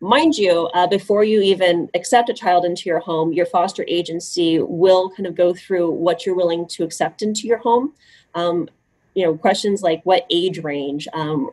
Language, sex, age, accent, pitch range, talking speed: English, female, 30-49, American, 165-190 Hz, 195 wpm